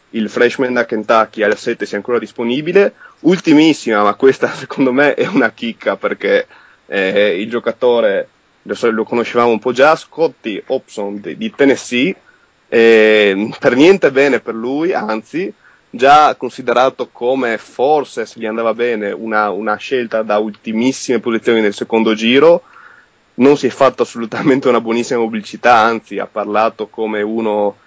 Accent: native